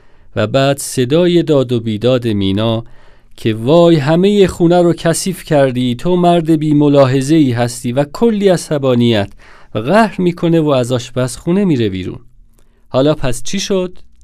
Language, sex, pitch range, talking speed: Persian, male, 115-165 Hz, 150 wpm